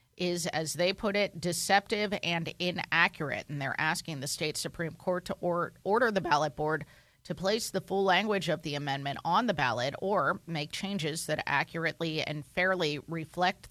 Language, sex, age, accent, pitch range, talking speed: English, female, 30-49, American, 150-185 Hz, 170 wpm